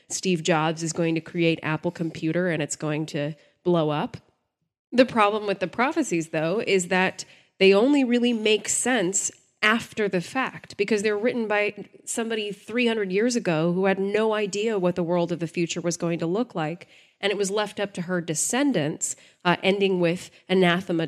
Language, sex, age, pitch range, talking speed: English, female, 20-39, 160-195 Hz, 185 wpm